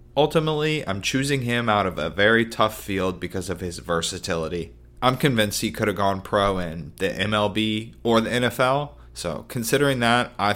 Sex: male